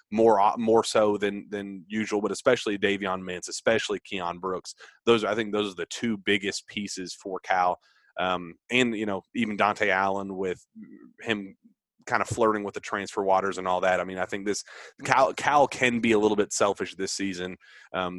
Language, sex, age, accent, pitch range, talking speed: English, male, 30-49, American, 100-135 Hz, 200 wpm